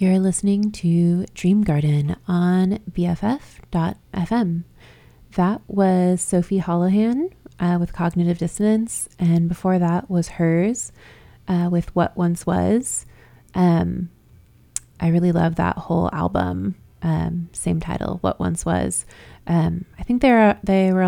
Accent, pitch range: American, 160-185 Hz